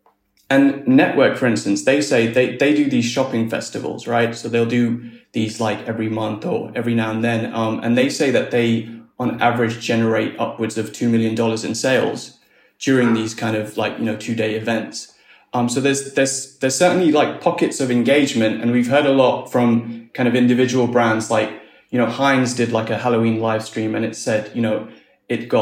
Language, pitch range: English, 110-125 Hz